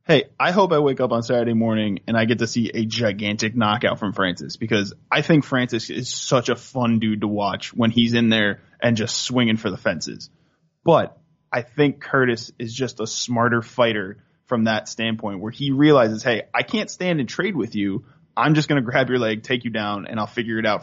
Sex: male